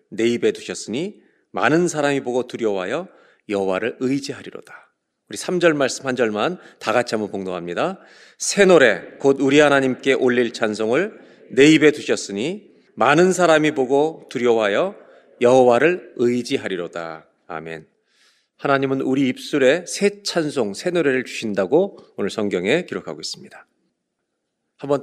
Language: Korean